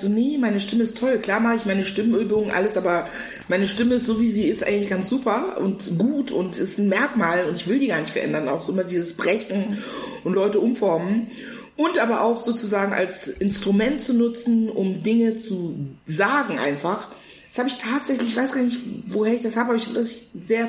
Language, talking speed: German, 215 wpm